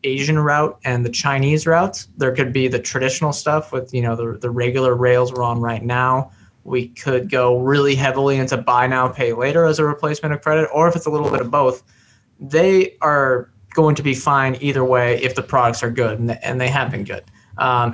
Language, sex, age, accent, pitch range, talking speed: English, male, 20-39, American, 120-145 Hz, 225 wpm